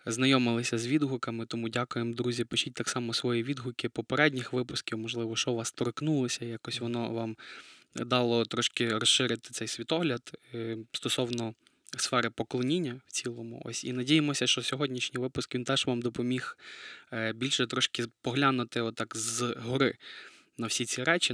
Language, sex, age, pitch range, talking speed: Ukrainian, male, 20-39, 120-130 Hz, 140 wpm